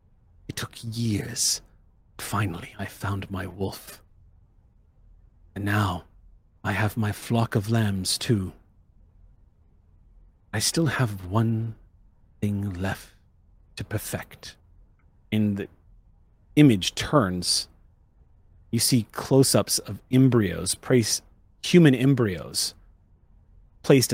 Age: 40-59